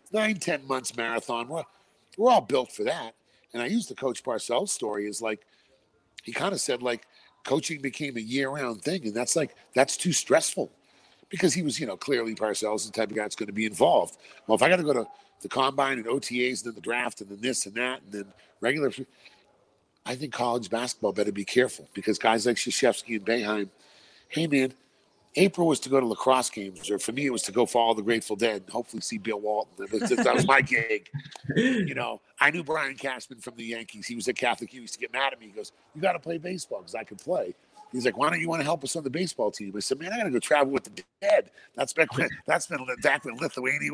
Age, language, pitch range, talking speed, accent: 40-59, English, 110-150 Hz, 240 wpm, American